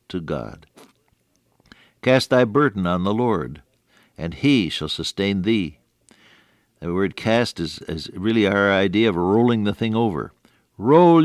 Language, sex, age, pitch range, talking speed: English, male, 60-79, 85-105 Hz, 145 wpm